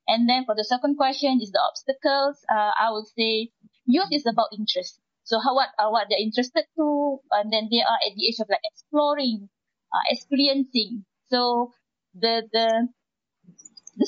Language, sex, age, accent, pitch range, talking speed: English, female, 20-39, Malaysian, 215-265 Hz, 180 wpm